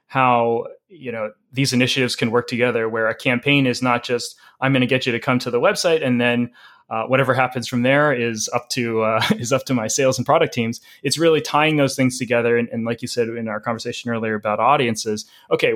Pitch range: 120-135 Hz